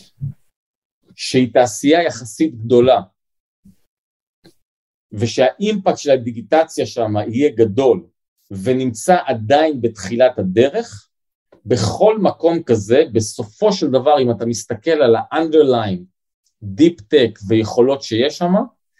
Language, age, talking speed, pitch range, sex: Hebrew, 40-59, 95 wpm, 105-140 Hz, male